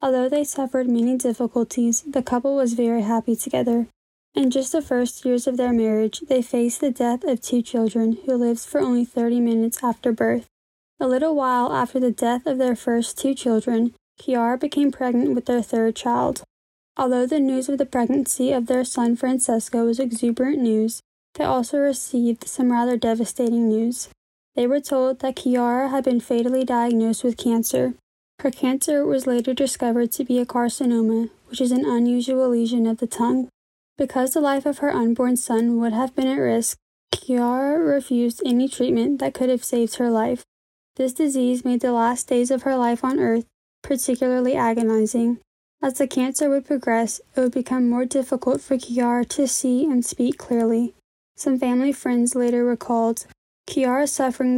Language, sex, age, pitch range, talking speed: English, female, 10-29, 235-265 Hz, 175 wpm